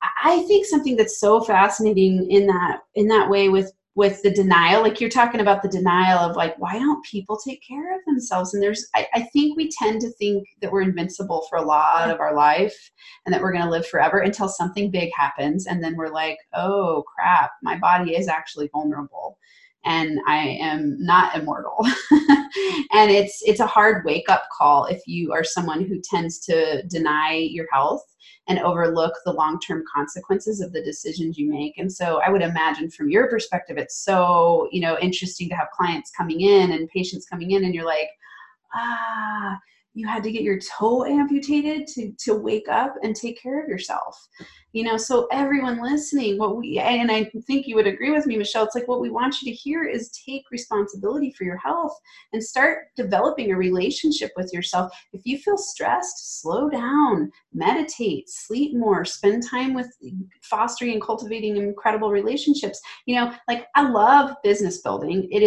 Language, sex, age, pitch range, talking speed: English, female, 30-49, 180-250 Hz, 190 wpm